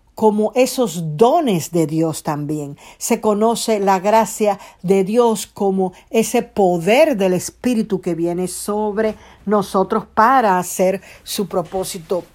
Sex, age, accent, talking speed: female, 50-69, American, 120 wpm